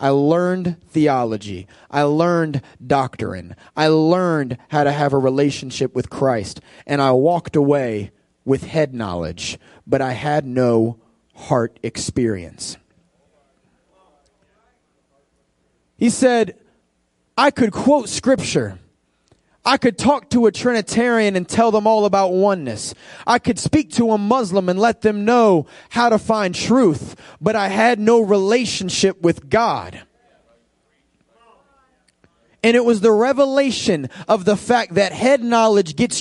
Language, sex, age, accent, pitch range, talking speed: English, male, 30-49, American, 155-230 Hz, 130 wpm